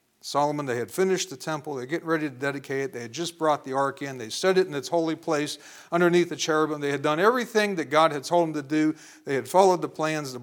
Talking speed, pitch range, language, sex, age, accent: 265 wpm, 135-175 Hz, English, male, 50-69, American